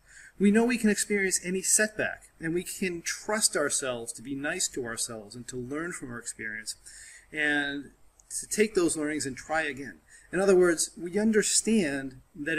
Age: 40-59